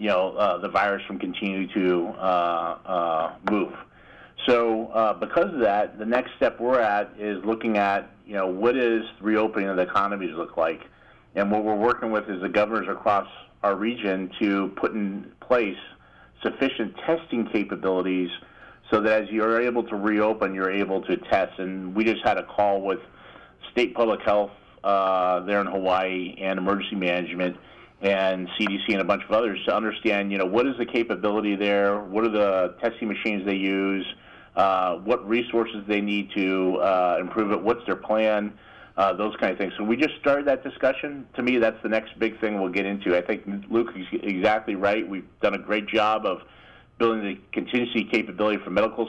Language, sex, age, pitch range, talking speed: English, male, 40-59, 95-115 Hz, 190 wpm